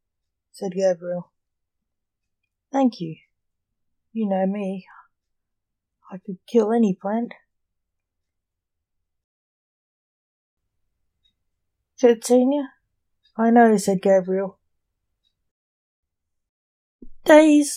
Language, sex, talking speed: English, female, 65 wpm